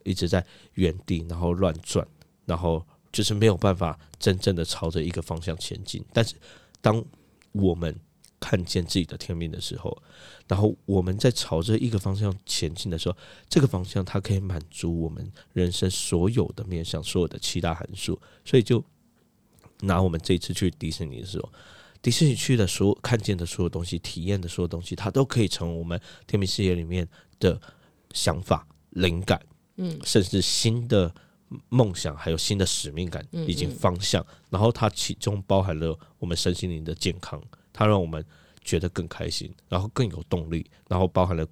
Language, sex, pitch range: Chinese, male, 85-100 Hz